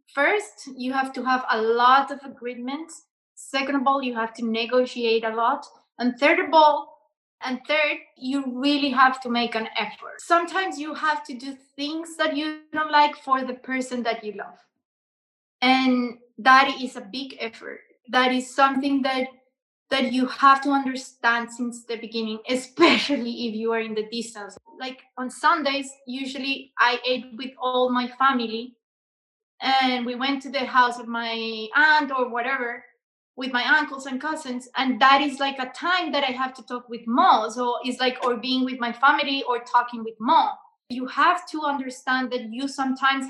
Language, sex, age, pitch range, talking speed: English, female, 20-39, 245-280 Hz, 180 wpm